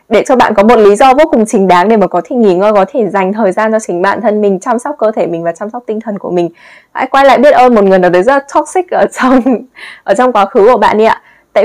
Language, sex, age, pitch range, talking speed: Vietnamese, female, 10-29, 185-245 Hz, 320 wpm